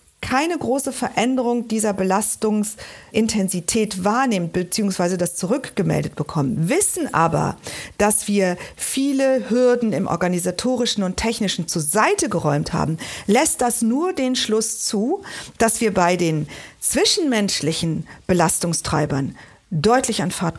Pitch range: 165-225 Hz